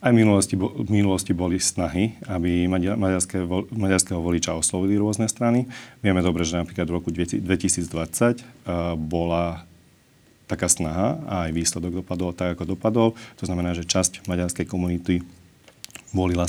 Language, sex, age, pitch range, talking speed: Slovak, male, 40-59, 90-100 Hz, 140 wpm